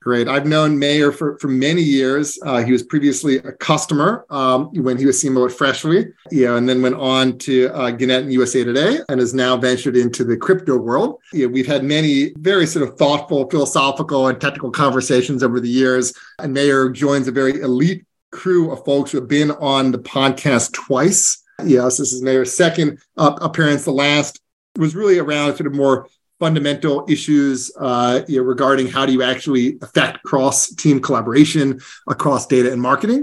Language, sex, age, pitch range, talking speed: English, male, 30-49, 130-145 Hz, 190 wpm